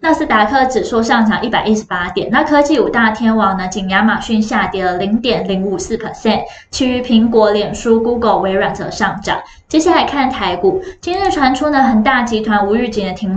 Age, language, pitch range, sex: 10-29, Chinese, 205-260 Hz, female